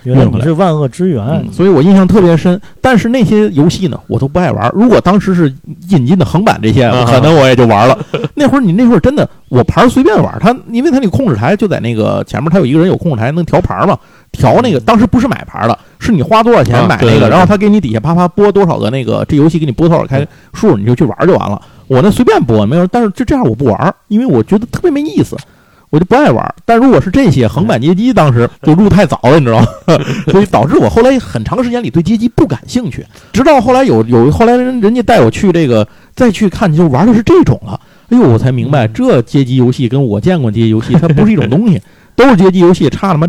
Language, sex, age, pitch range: Chinese, male, 50-69, 125-205 Hz